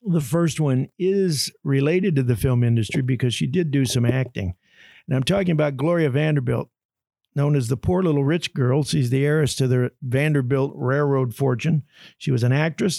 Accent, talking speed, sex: American, 185 wpm, male